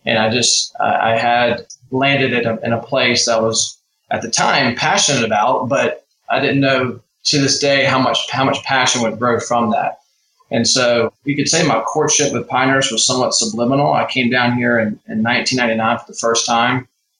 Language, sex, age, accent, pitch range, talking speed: English, male, 20-39, American, 115-130 Hz, 200 wpm